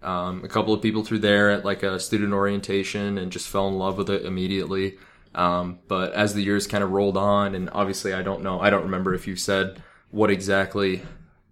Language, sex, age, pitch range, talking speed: English, male, 20-39, 95-105 Hz, 220 wpm